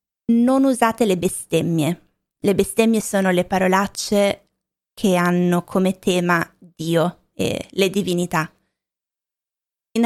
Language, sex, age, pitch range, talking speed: Italian, female, 20-39, 180-230 Hz, 105 wpm